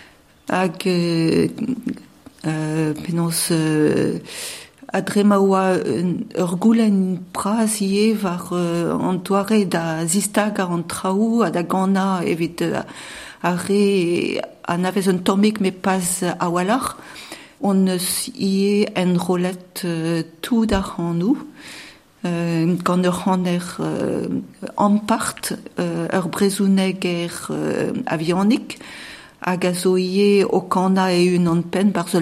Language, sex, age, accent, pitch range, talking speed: French, female, 50-69, French, 170-200 Hz, 110 wpm